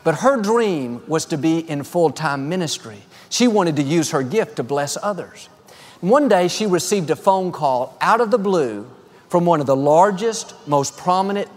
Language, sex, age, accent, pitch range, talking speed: English, male, 50-69, American, 150-200 Hz, 185 wpm